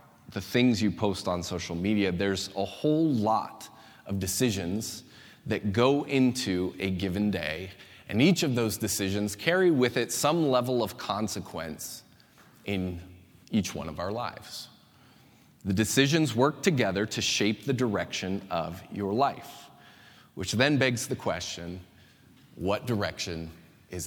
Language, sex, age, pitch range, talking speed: English, male, 30-49, 95-135 Hz, 140 wpm